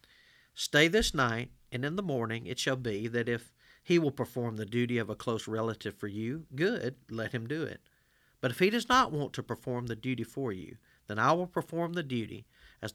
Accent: American